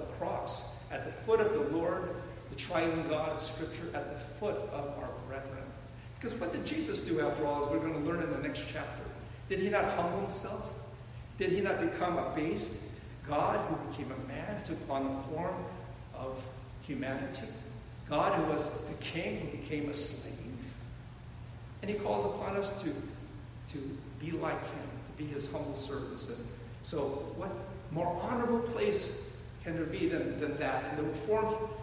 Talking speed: 175 wpm